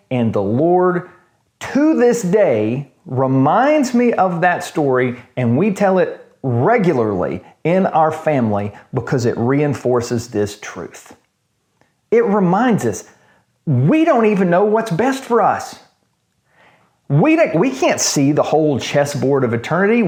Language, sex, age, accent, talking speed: English, male, 40-59, American, 130 wpm